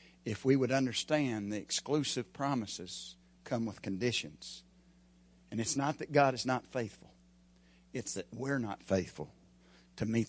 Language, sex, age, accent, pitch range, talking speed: English, male, 60-79, American, 90-125 Hz, 145 wpm